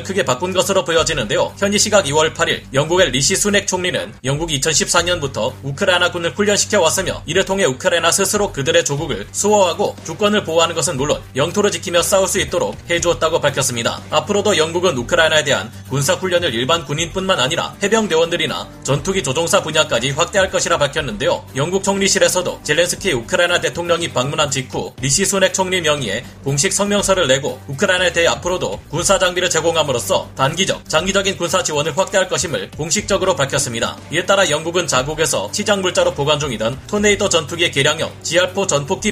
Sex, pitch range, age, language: male, 145-190 Hz, 30-49, Korean